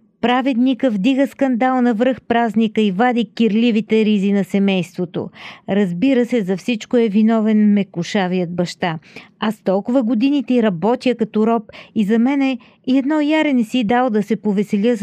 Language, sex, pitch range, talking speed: Bulgarian, female, 200-250 Hz, 150 wpm